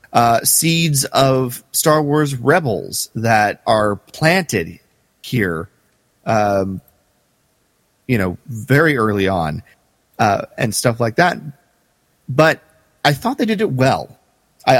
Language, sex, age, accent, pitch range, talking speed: English, male, 30-49, American, 100-130 Hz, 120 wpm